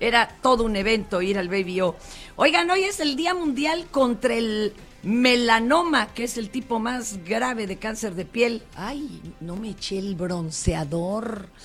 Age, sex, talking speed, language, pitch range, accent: 40-59, female, 165 wpm, Spanish, 190-250 Hz, Mexican